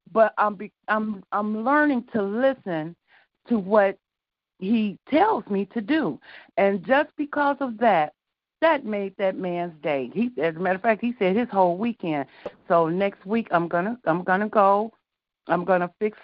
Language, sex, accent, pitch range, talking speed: English, female, American, 180-235 Hz, 170 wpm